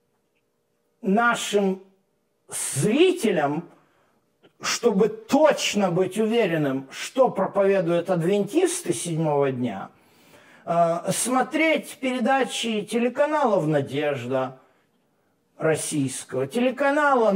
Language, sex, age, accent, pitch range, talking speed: Russian, male, 50-69, native, 175-240 Hz, 60 wpm